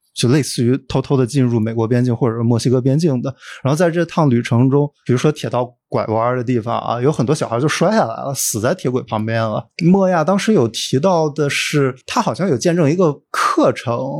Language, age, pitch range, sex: Chinese, 20-39, 120-165 Hz, male